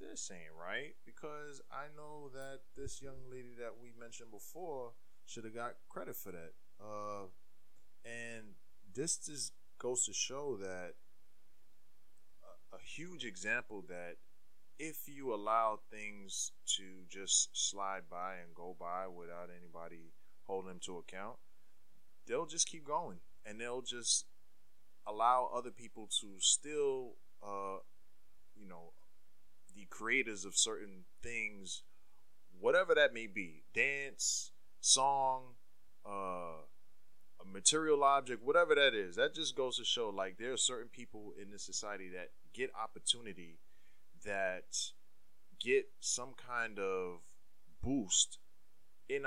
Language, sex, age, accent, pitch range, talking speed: English, male, 20-39, American, 95-130 Hz, 130 wpm